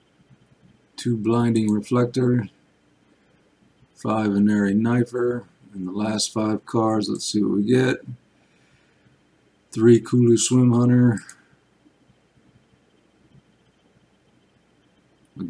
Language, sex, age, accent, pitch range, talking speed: English, male, 50-69, American, 100-115 Hz, 80 wpm